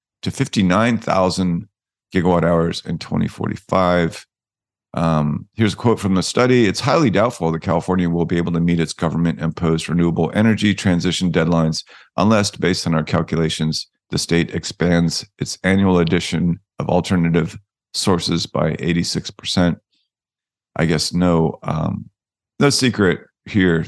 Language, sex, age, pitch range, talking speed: English, male, 40-59, 85-100 Hz, 135 wpm